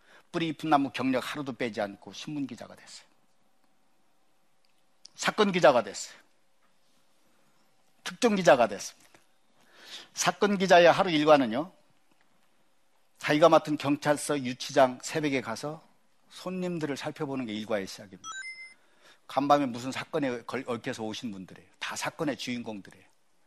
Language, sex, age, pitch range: Korean, male, 50-69, 120-155 Hz